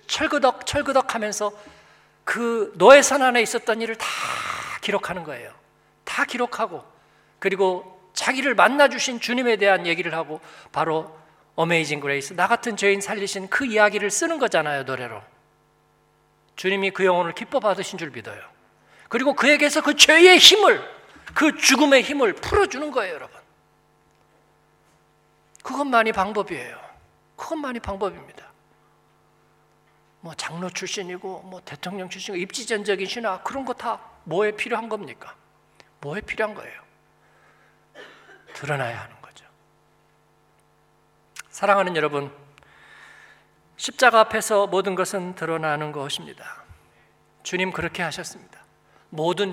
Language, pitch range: Korean, 175-245 Hz